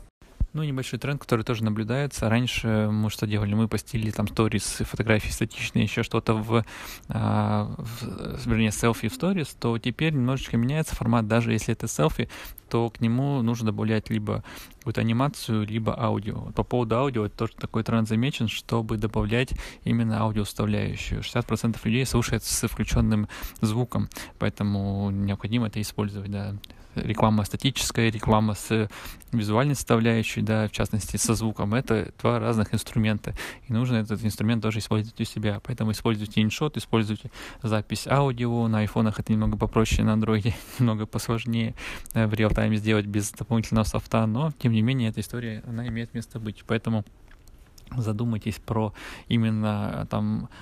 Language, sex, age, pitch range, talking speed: Russian, male, 20-39, 105-115 Hz, 150 wpm